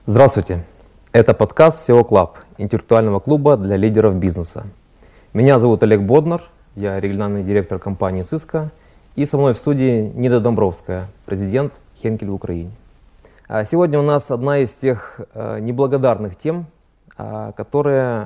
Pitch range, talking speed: 105-135 Hz, 130 wpm